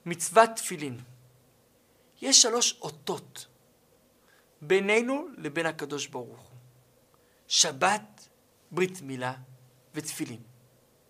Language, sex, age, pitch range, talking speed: Hebrew, male, 50-69, 160-220 Hz, 70 wpm